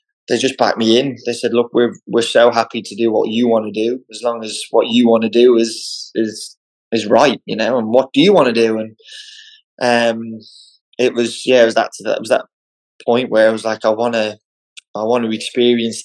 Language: English